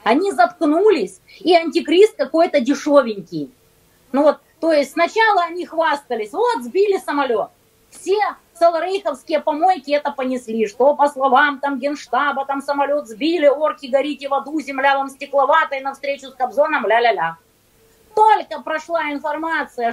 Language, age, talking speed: Russian, 20-39, 130 wpm